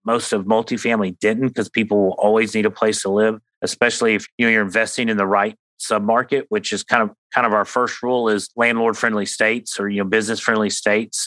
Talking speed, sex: 215 wpm, male